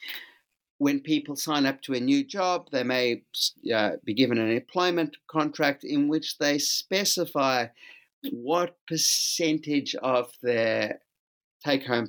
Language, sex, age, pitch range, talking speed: English, male, 50-69, 120-165 Hz, 125 wpm